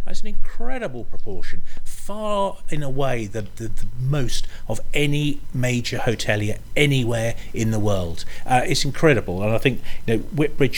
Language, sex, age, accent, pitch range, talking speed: English, male, 40-59, British, 105-135 Hz, 160 wpm